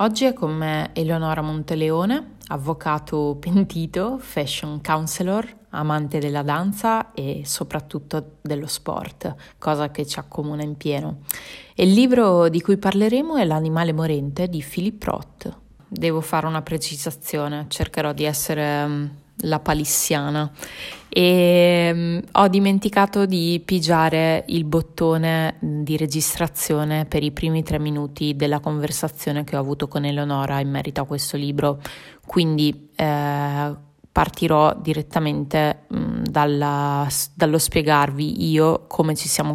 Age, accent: 20-39, native